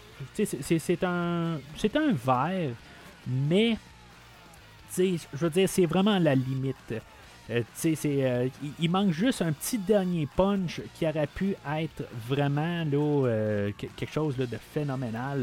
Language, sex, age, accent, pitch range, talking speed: French, male, 30-49, Canadian, 120-165 Hz, 145 wpm